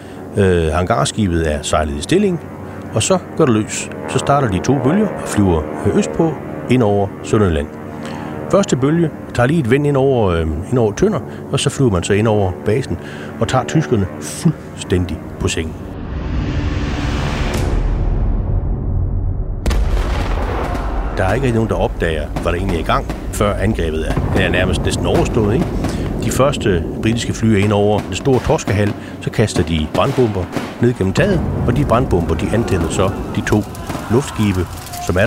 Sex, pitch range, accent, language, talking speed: male, 85-115 Hz, native, Danish, 165 wpm